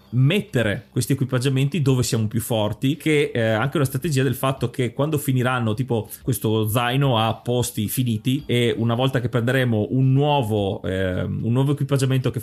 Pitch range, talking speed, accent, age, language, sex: 120-145 Hz, 175 wpm, native, 30-49, Italian, male